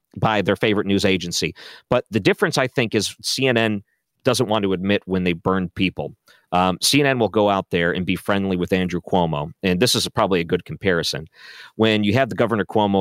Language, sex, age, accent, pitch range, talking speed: English, male, 40-59, American, 90-110 Hz, 210 wpm